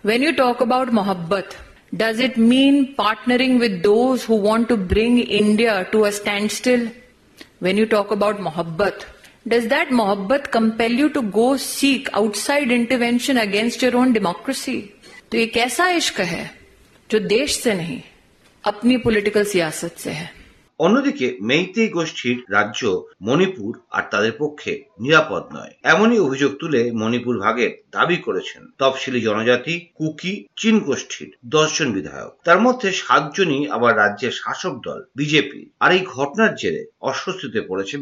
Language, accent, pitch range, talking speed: Bengali, native, 145-240 Hz, 145 wpm